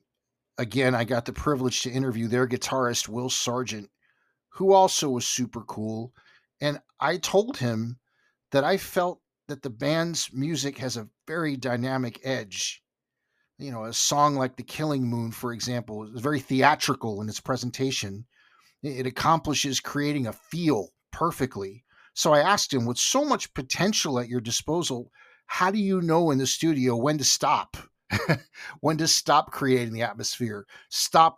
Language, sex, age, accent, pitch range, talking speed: English, male, 50-69, American, 120-150 Hz, 155 wpm